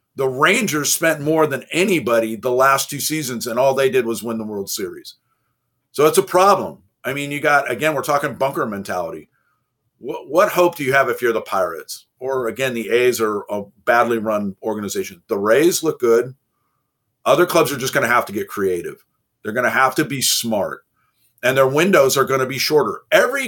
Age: 50-69